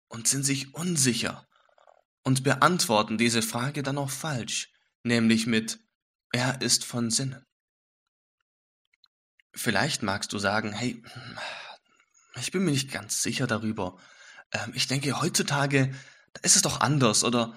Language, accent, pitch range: English, German, 115-140 Hz